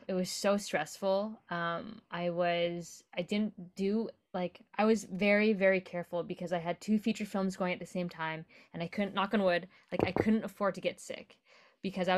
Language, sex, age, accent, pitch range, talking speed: English, female, 20-39, American, 180-210 Hz, 205 wpm